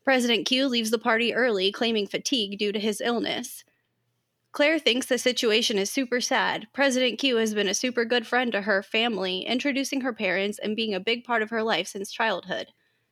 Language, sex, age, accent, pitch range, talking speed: English, female, 20-39, American, 205-245 Hz, 195 wpm